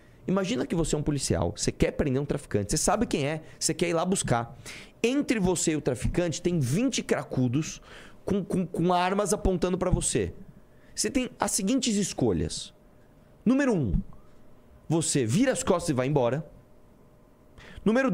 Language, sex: Portuguese, male